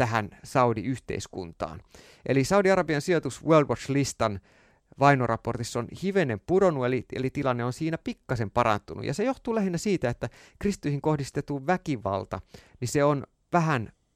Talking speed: 125 wpm